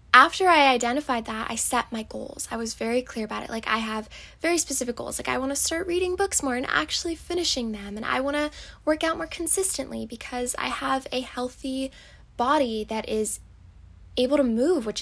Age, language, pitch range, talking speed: 10-29, English, 225-275 Hz, 210 wpm